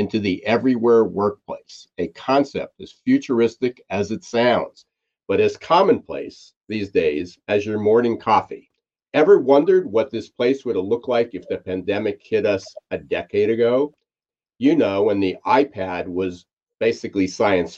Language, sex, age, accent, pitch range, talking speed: English, male, 50-69, American, 105-150 Hz, 150 wpm